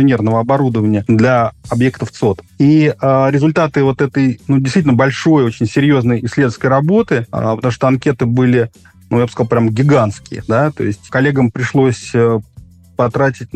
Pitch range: 120-140 Hz